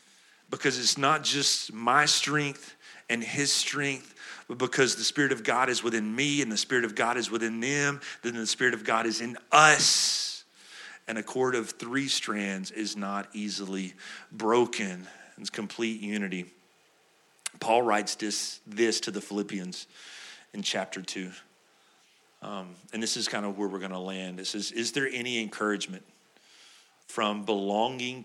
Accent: American